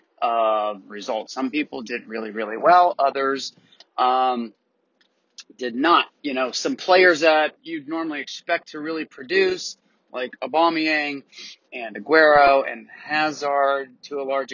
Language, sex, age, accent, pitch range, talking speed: English, male, 30-49, American, 120-165 Hz, 130 wpm